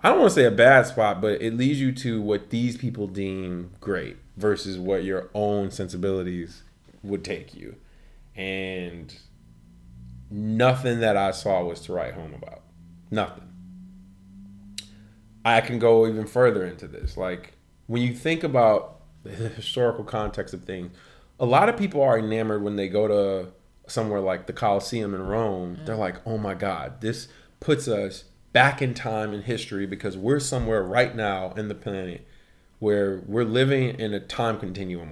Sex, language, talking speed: male, English, 165 wpm